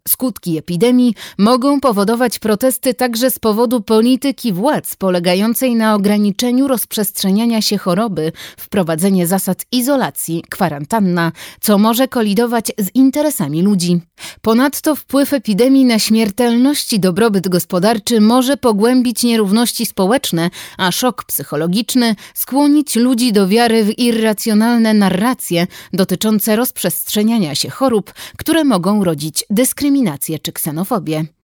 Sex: female